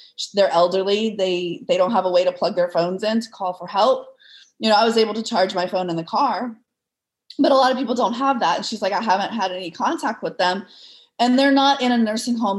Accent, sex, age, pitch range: American, female, 20-39, 185-245 Hz